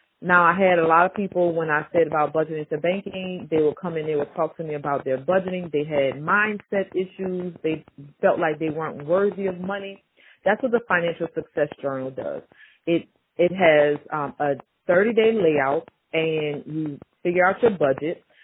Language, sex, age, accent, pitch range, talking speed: English, female, 30-49, American, 155-190 Hz, 190 wpm